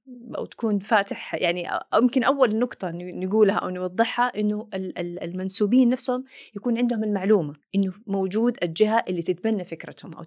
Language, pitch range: Arabic, 170-215 Hz